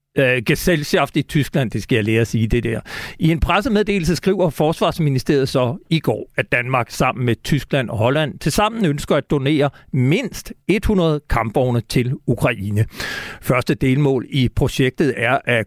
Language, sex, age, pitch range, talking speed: Danish, male, 60-79, 125-160 Hz, 155 wpm